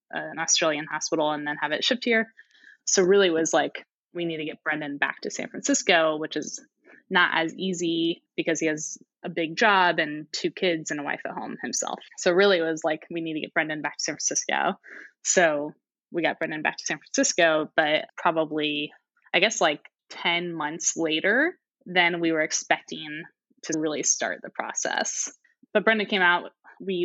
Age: 10-29